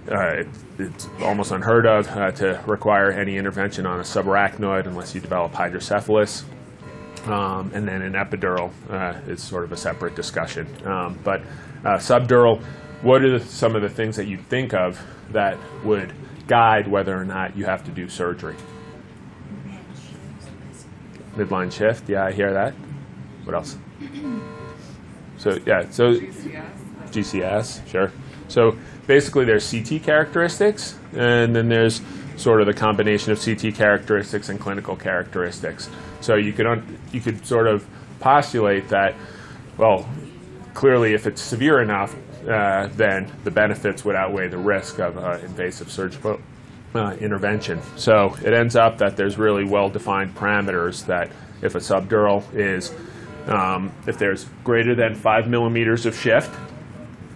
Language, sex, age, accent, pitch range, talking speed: English, male, 30-49, American, 100-115 Hz, 145 wpm